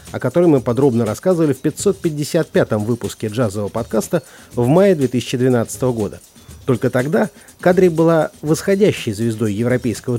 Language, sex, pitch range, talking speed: Russian, male, 115-160 Hz, 125 wpm